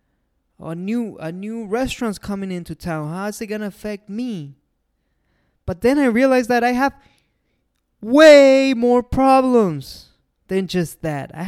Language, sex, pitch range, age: English, male, 150-235 Hz, 20-39